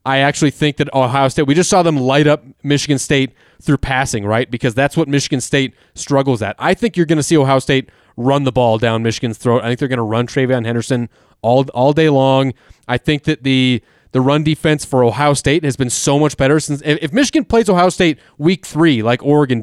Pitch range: 125-155 Hz